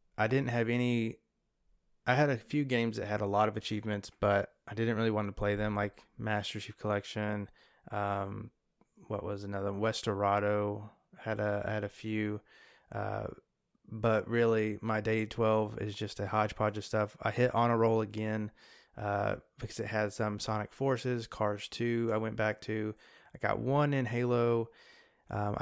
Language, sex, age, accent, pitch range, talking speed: English, male, 20-39, American, 105-115 Hz, 175 wpm